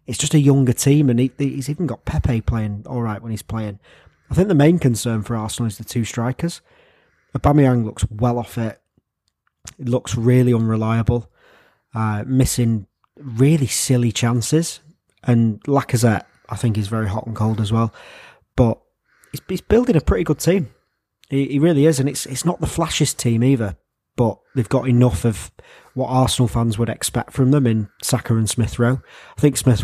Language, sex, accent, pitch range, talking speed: English, male, British, 110-140 Hz, 185 wpm